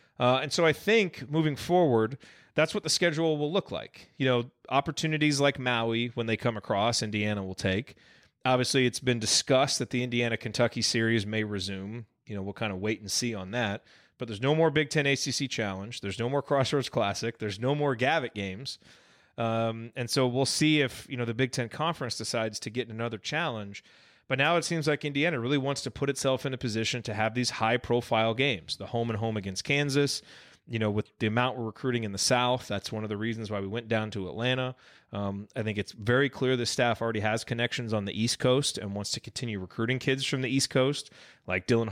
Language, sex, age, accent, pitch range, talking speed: English, male, 30-49, American, 110-135 Hz, 220 wpm